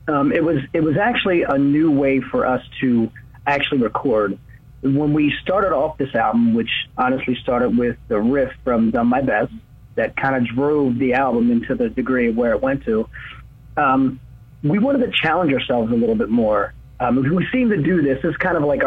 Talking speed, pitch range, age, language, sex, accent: 205 wpm, 125-160 Hz, 30-49, English, male, American